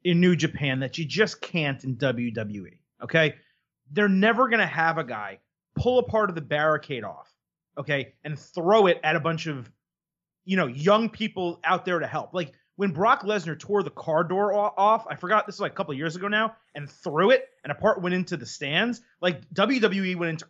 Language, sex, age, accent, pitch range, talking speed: English, male, 30-49, American, 155-210 Hz, 215 wpm